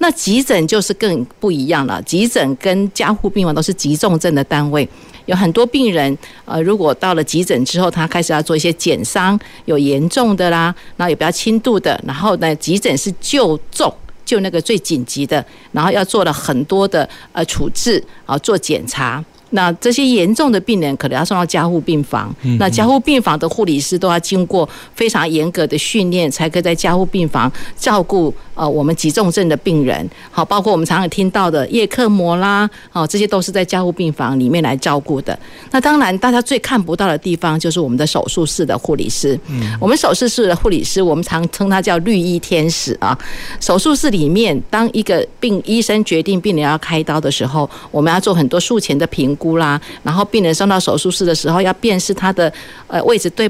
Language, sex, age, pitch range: Chinese, female, 50-69, 155-205 Hz